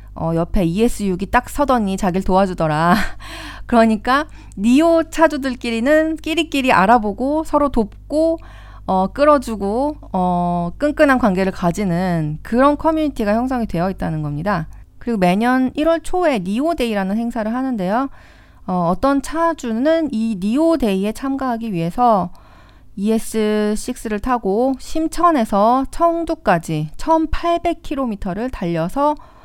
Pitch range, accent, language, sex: 185-275 Hz, native, Korean, female